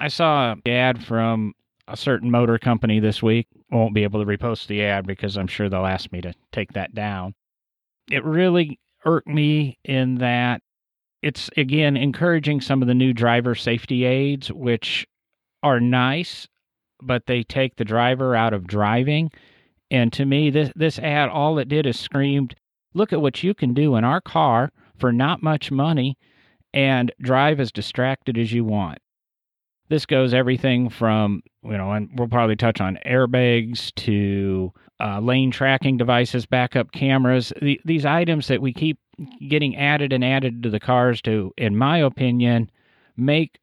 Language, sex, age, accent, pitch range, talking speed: English, male, 40-59, American, 110-135 Hz, 170 wpm